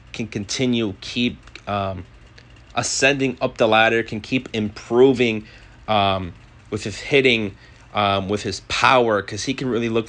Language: English